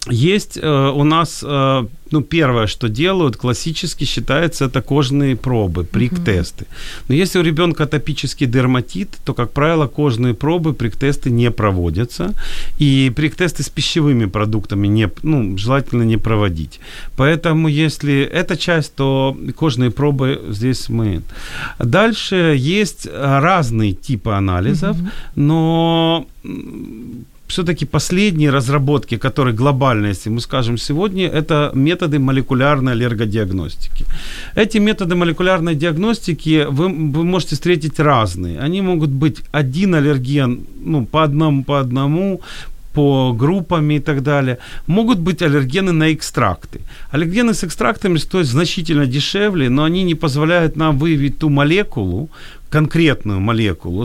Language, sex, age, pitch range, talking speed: Ukrainian, male, 40-59, 130-170 Hz, 125 wpm